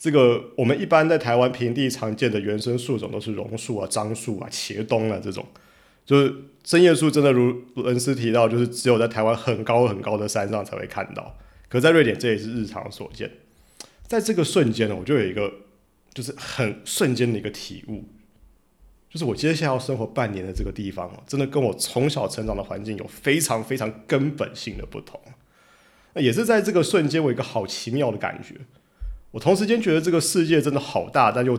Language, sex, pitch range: Chinese, male, 110-140 Hz